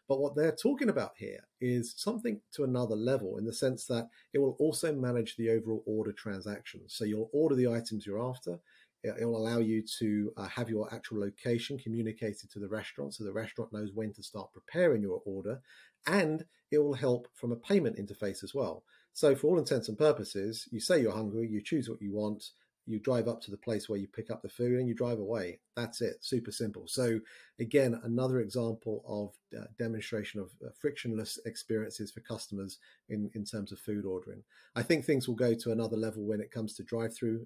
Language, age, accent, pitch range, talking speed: English, 40-59, British, 105-120 Hz, 210 wpm